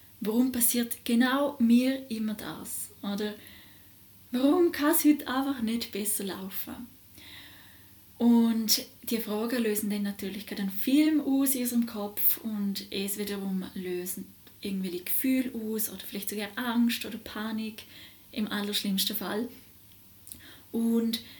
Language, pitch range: German, 195-235 Hz